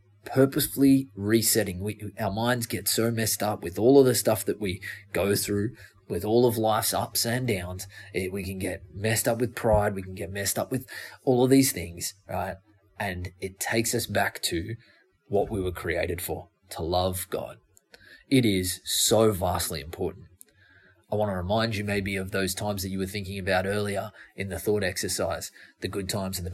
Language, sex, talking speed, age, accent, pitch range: English, male, 190 wpm, 20-39, Australian, 90-110 Hz